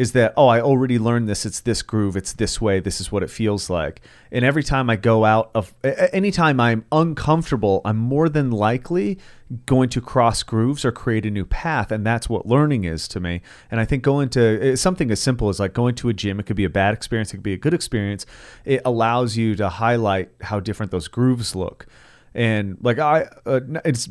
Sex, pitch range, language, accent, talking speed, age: male, 100-130 Hz, English, American, 225 wpm, 30-49